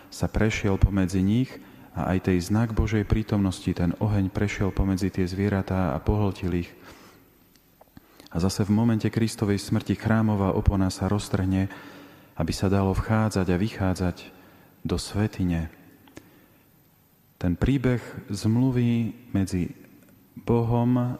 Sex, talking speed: male, 120 wpm